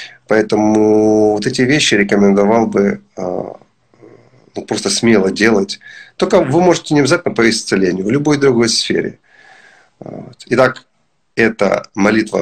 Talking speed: 125 wpm